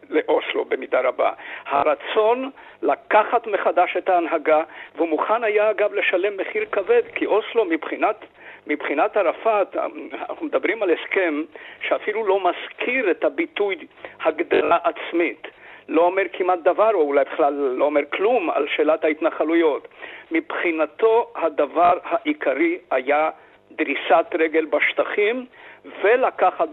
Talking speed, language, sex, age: 115 wpm, Hebrew, male, 50-69